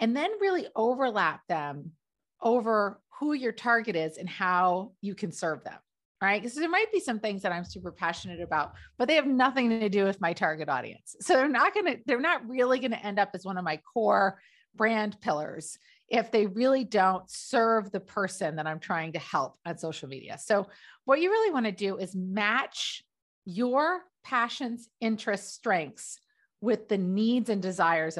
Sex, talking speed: female, 190 wpm